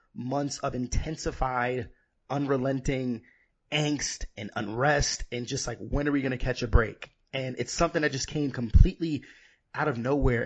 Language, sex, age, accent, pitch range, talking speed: English, male, 30-49, American, 125-160 Hz, 160 wpm